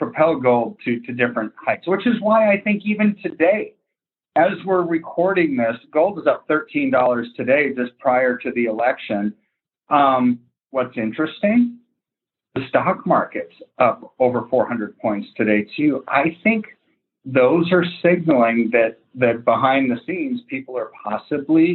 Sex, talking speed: male, 145 wpm